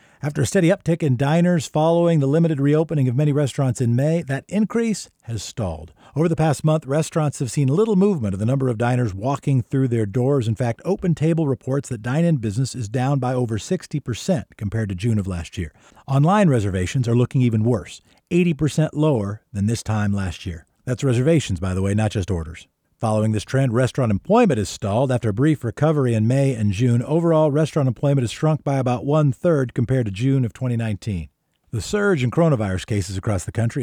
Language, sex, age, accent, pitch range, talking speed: English, male, 50-69, American, 110-155 Hz, 200 wpm